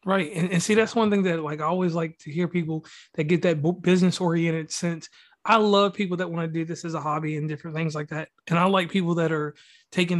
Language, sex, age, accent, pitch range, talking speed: English, male, 30-49, American, 160-190 Hz, 255 wpm